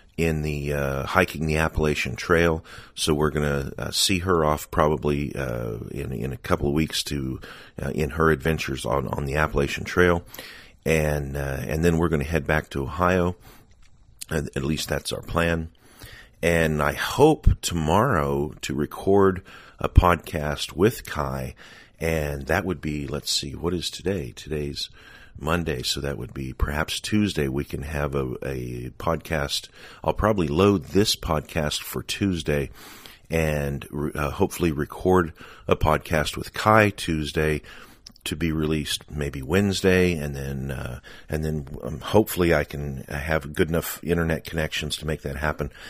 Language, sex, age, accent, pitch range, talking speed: English, male, 40-59, American, 70-90 Hz, 160 wpm